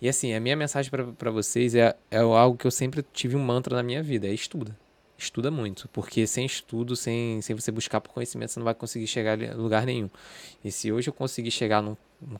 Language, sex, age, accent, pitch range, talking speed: Portuguese, male, 20-39, Brazilian, 115-150 Hz, 230 wpm